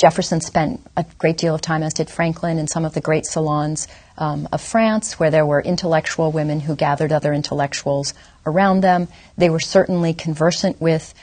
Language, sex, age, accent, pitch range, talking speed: English, female, 40-59, American, 155-190 Hz, 185 wpm